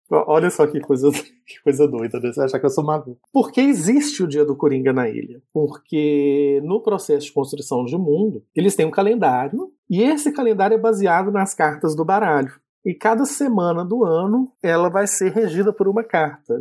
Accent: Brazilian